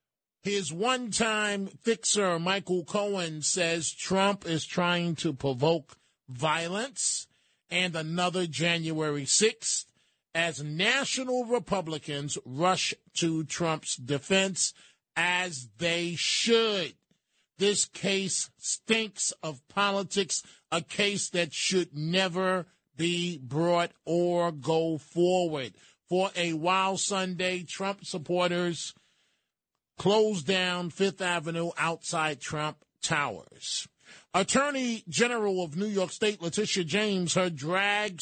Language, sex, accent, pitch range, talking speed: English, male, American, 165-200 Hz, 100 wpm